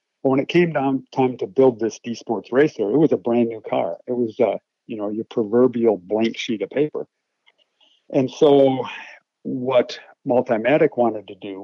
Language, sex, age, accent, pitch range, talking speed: English, male, 50-69, American, 110-135 Hz, 175 wpm